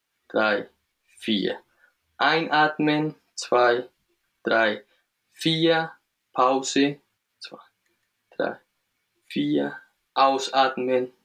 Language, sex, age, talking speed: German, male, 20-39, 60 wpm